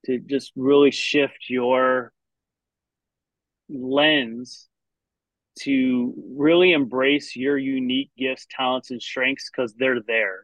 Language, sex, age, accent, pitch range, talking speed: English, male, 30-49, American, 125-145 Hz, 105 wpm